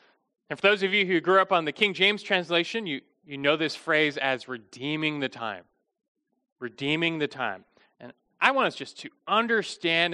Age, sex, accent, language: 30-49, male, American, English